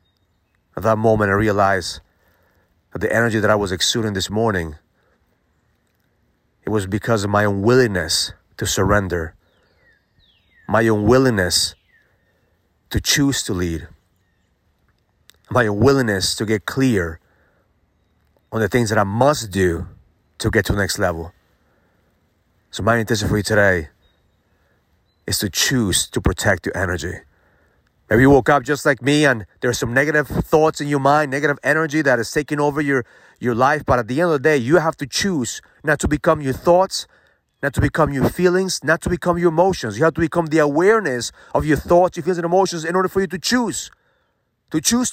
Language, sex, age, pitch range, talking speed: English, male, 30-49, 95-145 Hz, 175 wpm